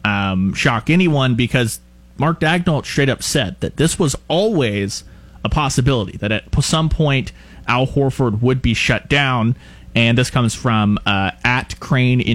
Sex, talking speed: male, 155 wpm